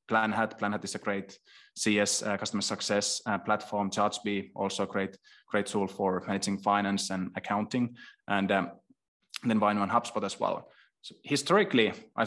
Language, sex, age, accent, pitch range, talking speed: English, male, 20-39, Finnish, 100-115 Hz, 165 wpm